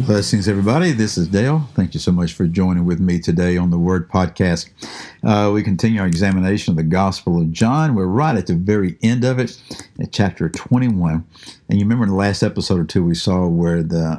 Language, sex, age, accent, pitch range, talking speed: English, male, 60-79, American, 90-115 Hz, 220 wpm